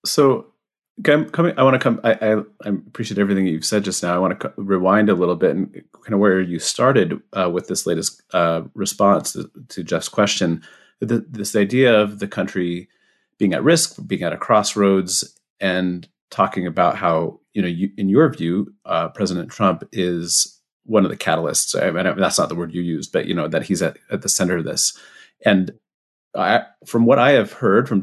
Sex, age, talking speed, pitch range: male, 30-49, 215 wpm, 95-115 Hz